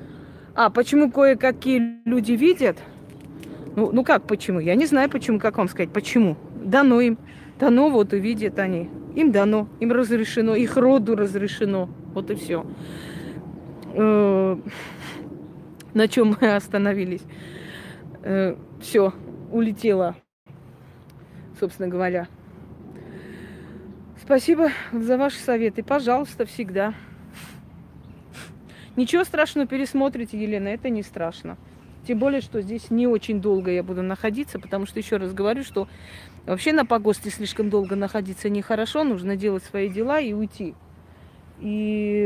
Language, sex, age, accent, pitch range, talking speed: Russian, female, 20-39, native, 185-235 Hz, 120 wpm